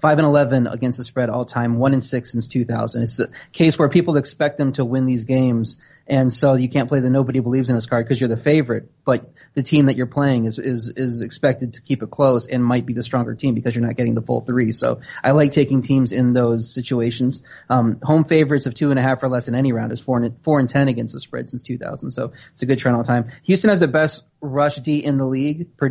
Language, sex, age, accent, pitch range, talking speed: English, male, 30-49, American, 120-140 Hz, 265 wpm